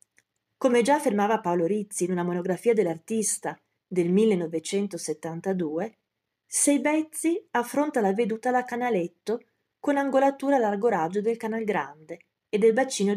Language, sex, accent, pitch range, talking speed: Italian, female, native, 170-240 Hz, 130 wpm